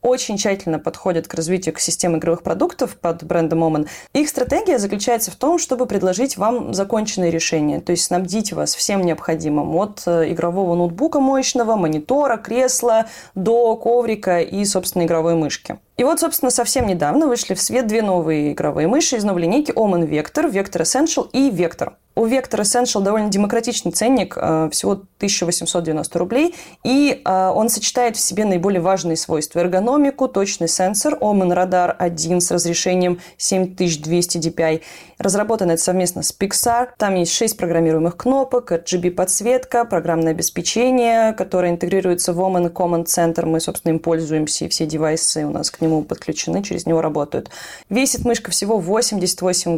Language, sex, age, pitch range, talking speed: Russian, female, 20-39, 170-230 Hz, 150 wpm